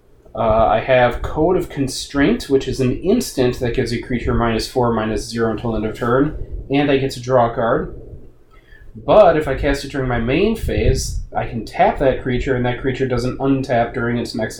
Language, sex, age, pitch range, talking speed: English, male, 30-49, 115-135 Hz, 210 wpm